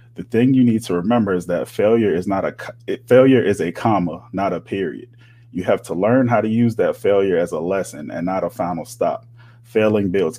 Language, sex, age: English, male, 30-49